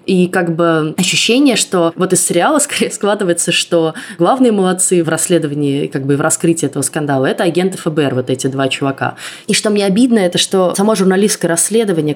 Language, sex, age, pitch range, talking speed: Russian, female, 20-39, 145-180 Hz, 190 wpm